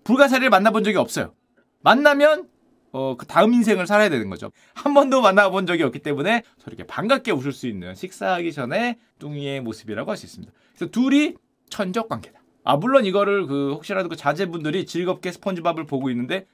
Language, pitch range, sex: Korean, 160-245 Hz, male